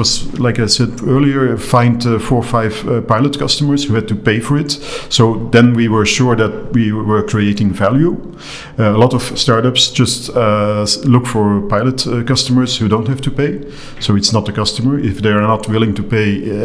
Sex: male